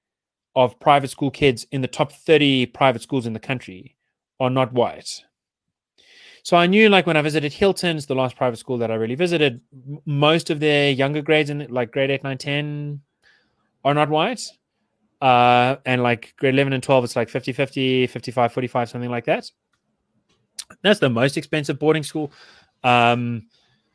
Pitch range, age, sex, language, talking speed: 115-145 Hz, 20-39, male, English, 175 wpm